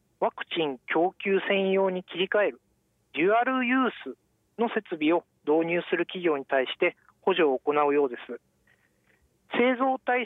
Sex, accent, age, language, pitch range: male, native, 40-59, Japanese, 150-240 Hz